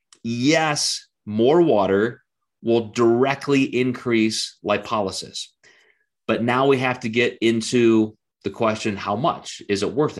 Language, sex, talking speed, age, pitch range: English, male, 125 wpm, 30-49, 105-130 Hz